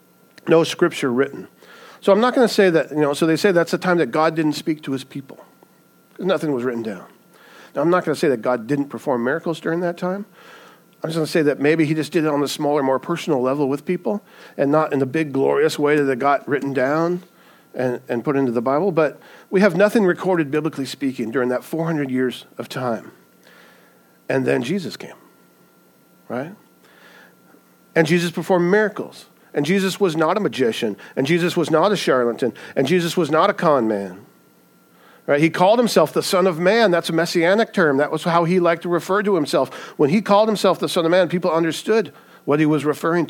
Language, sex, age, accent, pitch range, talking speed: English, male, 50-69, American, 135-180 Hz, 215 wpm